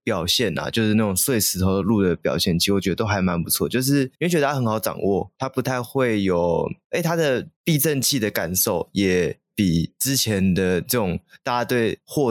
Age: 20-39